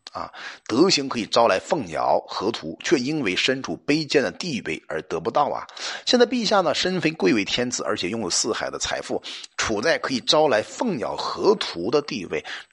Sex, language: male, Chinese